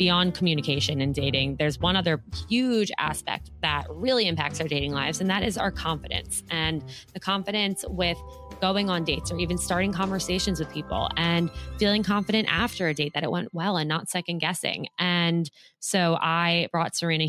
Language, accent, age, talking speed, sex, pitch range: English, American, 20-39, 180 wpm, female, 150-185 Hz